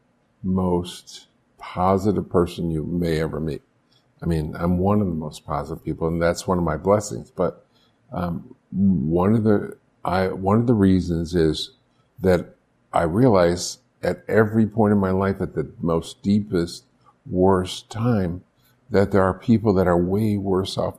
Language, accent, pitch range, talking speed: English, American, 90-110 Hz, 165 wpm